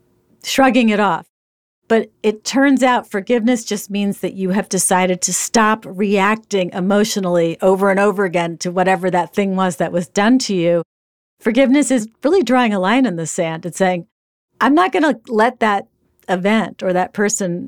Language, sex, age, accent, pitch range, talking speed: English, female, 40-59, American, 175-220 Hz, 180 wpm